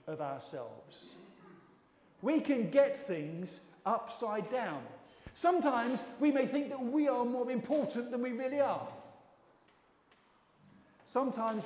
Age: 40-59